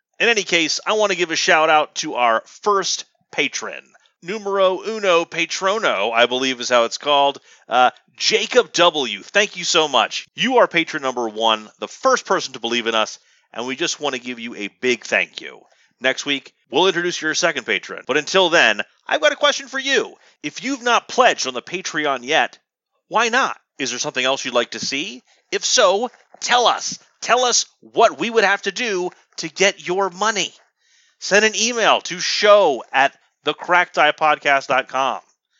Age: 30-49